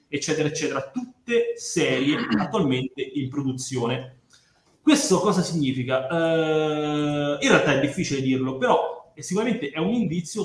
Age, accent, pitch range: 30-49, native, 130-155 Hz